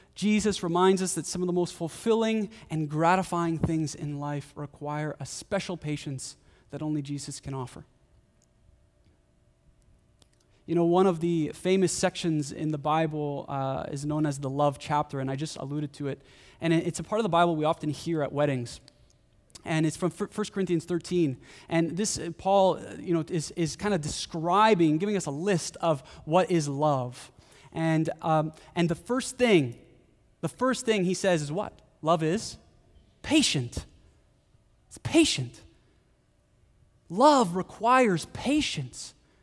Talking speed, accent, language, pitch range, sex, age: 155 wpm, American, English, 145-205 Hz, male, 20-39